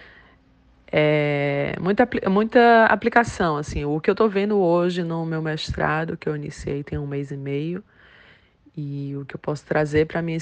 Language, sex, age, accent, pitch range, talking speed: Portuguese, female, 20-39, Brazilian, 140-160 Hz, 180 wpm